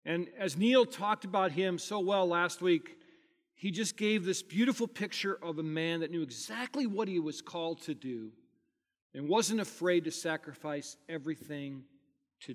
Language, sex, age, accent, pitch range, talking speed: English, male, 40-59, American, 165-235 Hz, 165 wpm